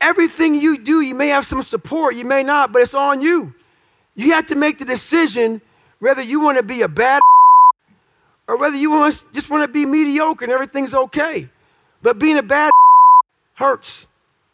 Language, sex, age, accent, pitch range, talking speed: English, male, 40-59, American, 230-295 Hz, 200 wpm